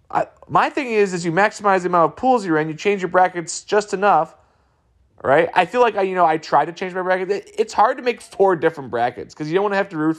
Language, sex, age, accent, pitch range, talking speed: English, male, 20-39, American, 130-195 Hz, 275 wpm